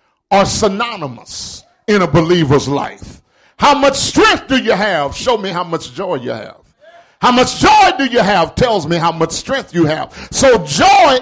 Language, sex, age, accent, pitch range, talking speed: English, male, 50-69, American, 175-260 Hz, 180 wpm